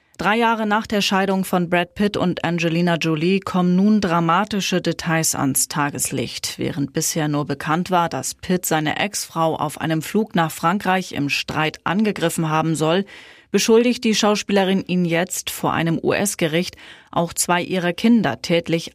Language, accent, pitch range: German, German, 160-195 Hz